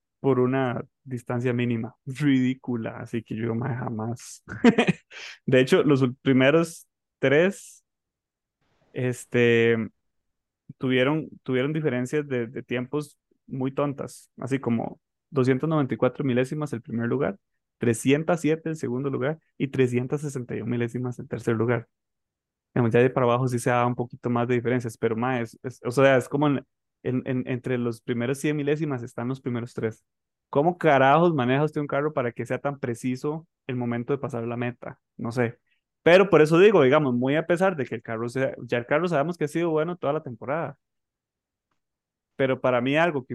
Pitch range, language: 120-140 Hz, Spanish